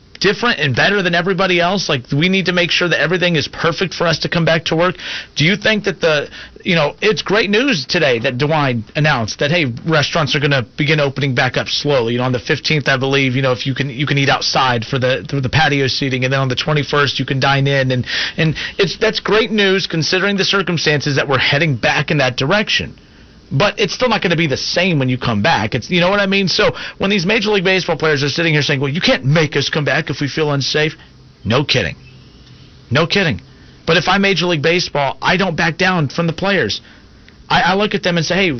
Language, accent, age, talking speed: English, American, 40-59, 250 wpm